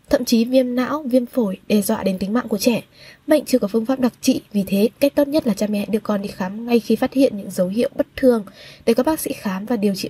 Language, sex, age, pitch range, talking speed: Vietnamese, female, 10-29, 215-265 Hz, 290 wpm